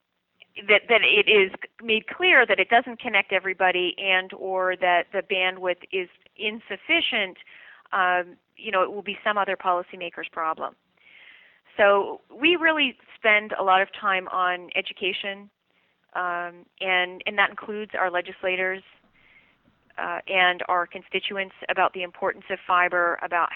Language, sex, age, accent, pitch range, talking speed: English, female, 30-49, American, 180-200 Hz, 140 wpm